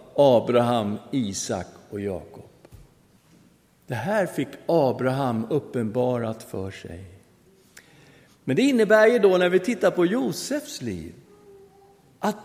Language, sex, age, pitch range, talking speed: Swedish, male, 50-69, 145-235 Hz, 110 wpm